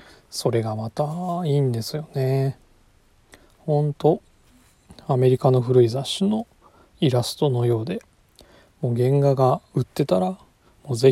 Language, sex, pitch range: Japanese, male, 110-150 Hz